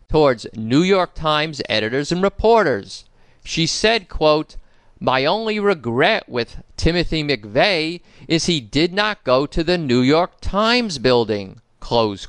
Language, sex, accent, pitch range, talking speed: English, male, American, 125-195 Hz, 135 wpm